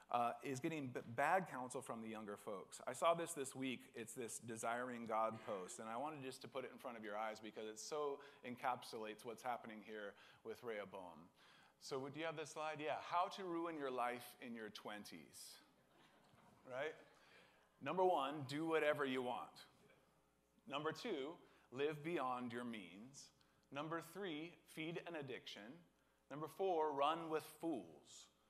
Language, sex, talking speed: English, male, 165 wpm